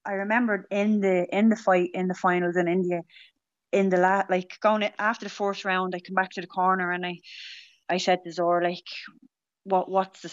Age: 20-39